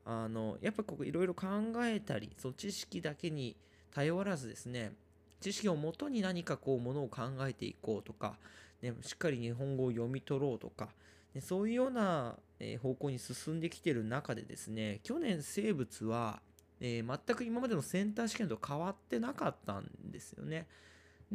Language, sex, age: Japanese, male, 20-39